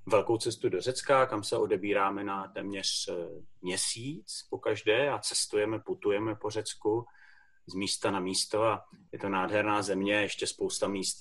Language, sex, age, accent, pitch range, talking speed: Czech, male, 30-49, native, 100-140 Hz, 155 wpm